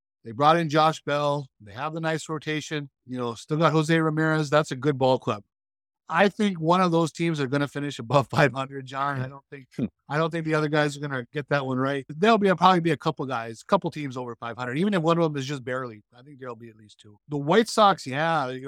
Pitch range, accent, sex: 130-175 Hz, American, male